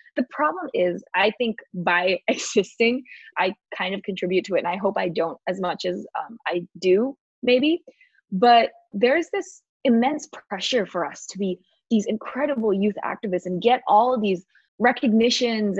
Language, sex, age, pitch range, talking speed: English, female, 20-39, 195-260 Hz, 165 wpm